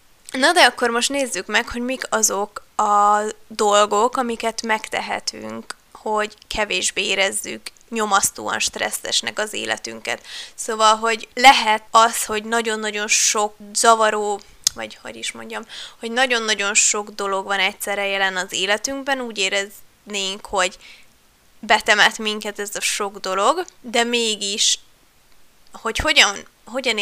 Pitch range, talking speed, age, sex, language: 205-240 Hz, 120 wpm, 20-39, female, Hungarian